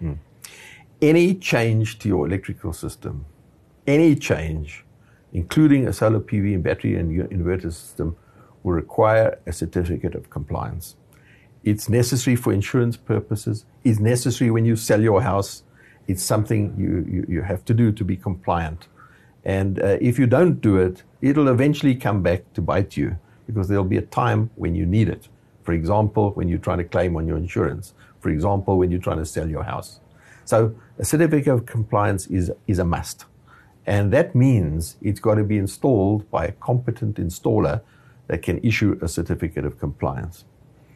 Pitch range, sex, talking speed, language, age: 90-120 Hz, male, 170 wpm, English, 60-79